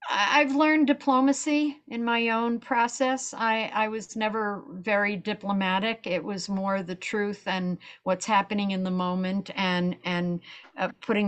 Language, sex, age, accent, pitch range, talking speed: English, female, 60-79, American, 180-225 Hz, 150 wpm